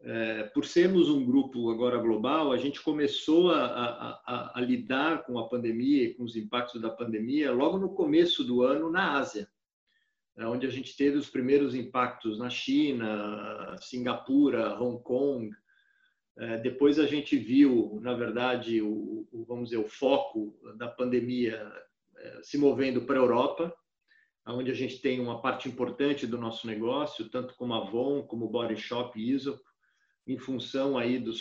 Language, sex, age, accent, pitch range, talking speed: Portuguese, male, 50-69, Brazilian, 120-155 Hz, 170 wpm